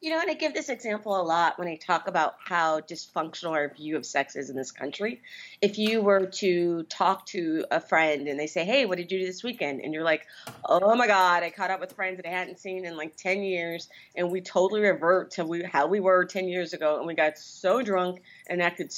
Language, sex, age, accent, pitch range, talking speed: English, female, 30-49, American, 160-200 Hz, 245 wpm